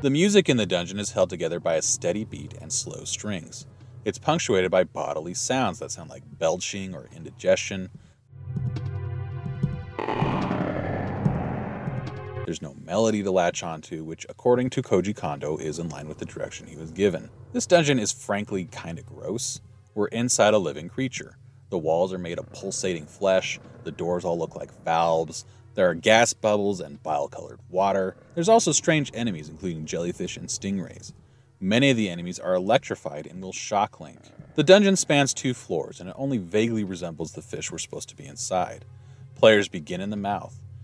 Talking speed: 175 wpm